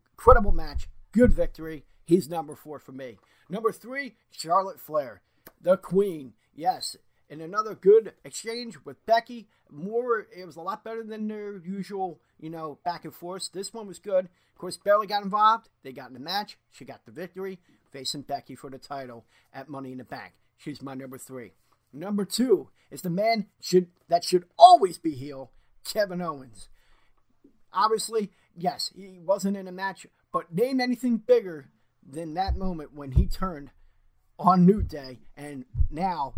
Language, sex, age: English, male, 40-59